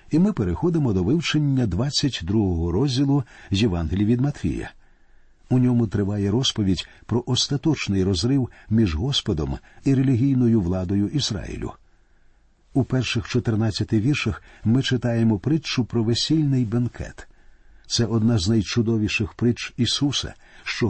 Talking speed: 120 wpm